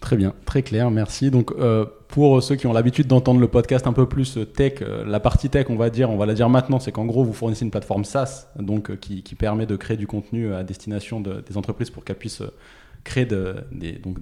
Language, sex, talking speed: French, male, 245 wpm